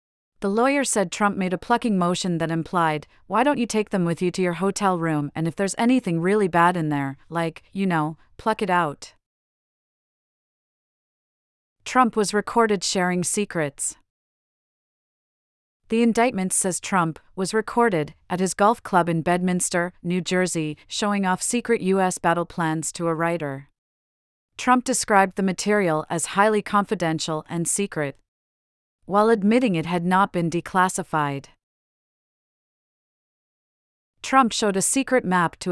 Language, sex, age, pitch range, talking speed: English, female, 40-59, 165-210 Hz, 145 wpm